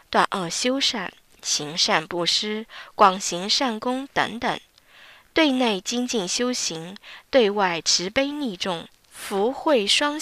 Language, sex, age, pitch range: Chinese, female, 20-39, 175-285 Hz